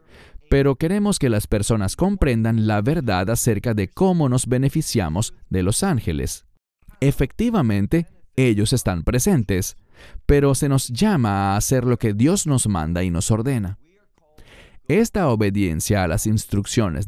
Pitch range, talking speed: 105-145 Hz, 135 wpm